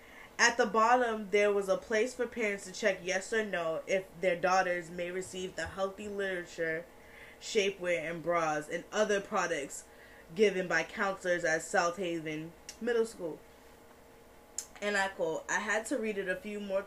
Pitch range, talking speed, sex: 165-200 Hz, 165 wpm, female